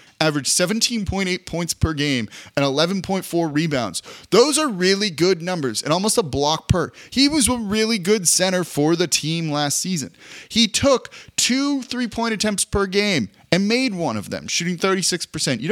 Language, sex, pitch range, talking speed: English, male, 125-190 Hz, 170 wpm